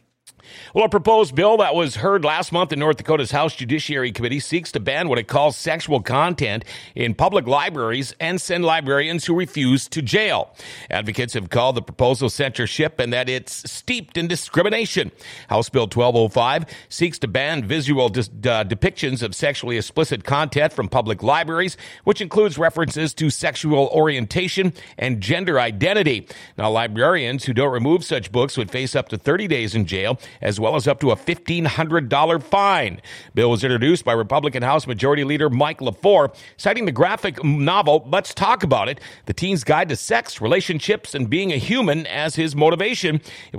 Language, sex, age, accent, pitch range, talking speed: English, male, 50-69, American, 125-165 Hz, 175 wpm